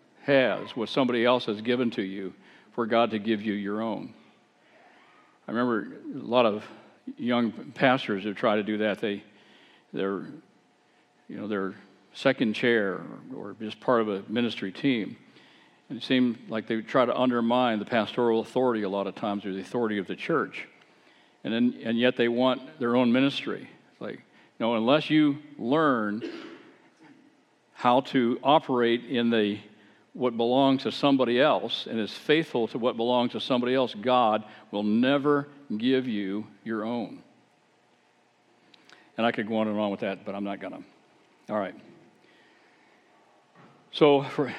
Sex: male